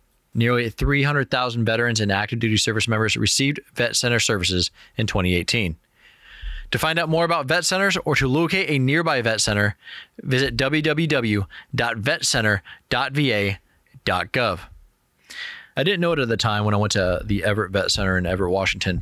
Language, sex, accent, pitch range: English, male, American, 105-155 Hz